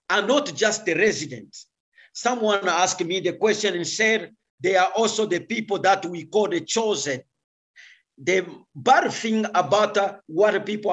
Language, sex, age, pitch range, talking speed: English, male, 50-69, 190-245 Hz, 155 wpm